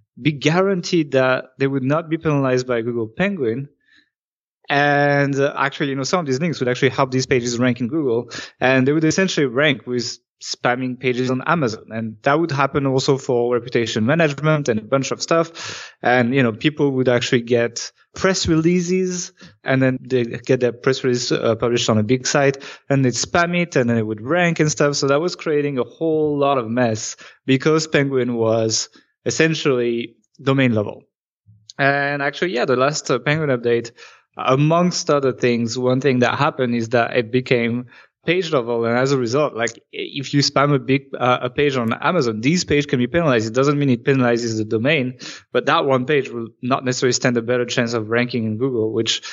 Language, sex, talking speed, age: English, male, 200 wpm, 20-39